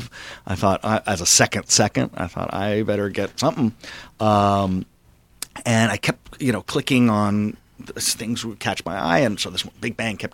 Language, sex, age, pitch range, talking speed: English, male, 40-59, 95-115 Hz, 180 wpm